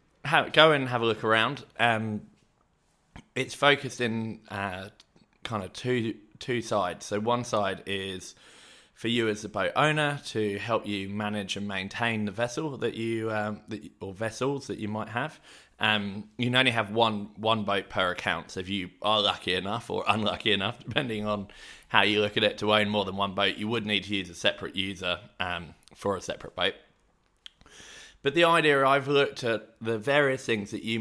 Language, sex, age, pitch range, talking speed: English, male, 20-39, 100-115 Hz, 195 wpm